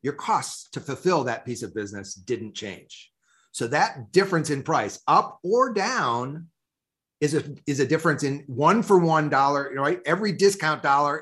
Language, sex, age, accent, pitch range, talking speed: English, male, 40-59, American, 125-165 Hz, 170 wpm